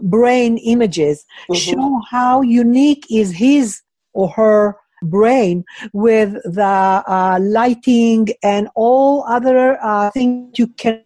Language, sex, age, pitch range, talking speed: English, female, 50-69, 190-245 Hz, 115 wpm